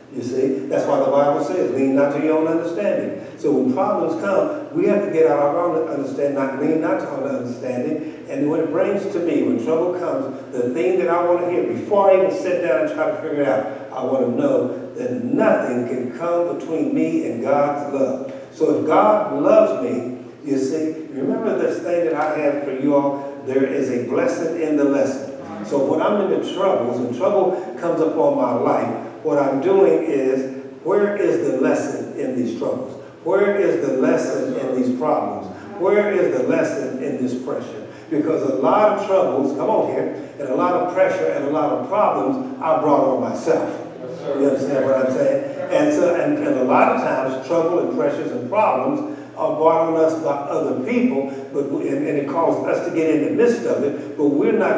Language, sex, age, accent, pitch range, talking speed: English, male, 50-69, American, 135-175 Hz, 210 wpm